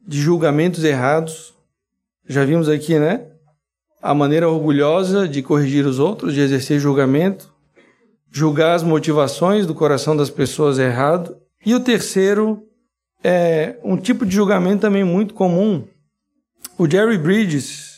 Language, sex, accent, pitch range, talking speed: Portuguese, male, Brazilian, 155-205 Hz, 130 wpm